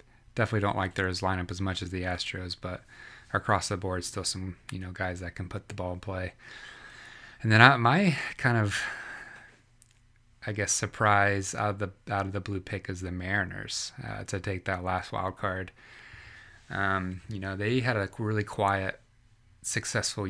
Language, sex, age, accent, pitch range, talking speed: English, male, 20-39, American, 95-110 Hz, 185 wpm